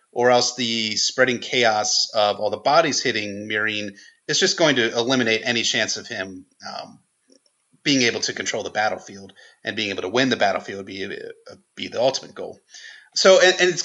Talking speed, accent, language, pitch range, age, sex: 195 wpm, American, English, 110-180 Hz, 30-49, male